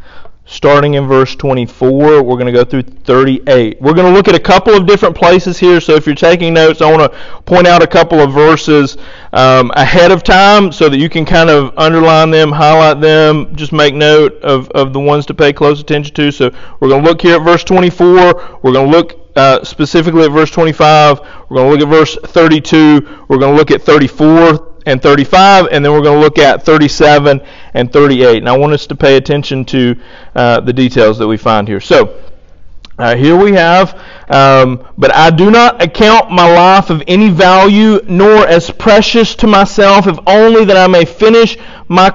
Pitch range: 140-180 Hz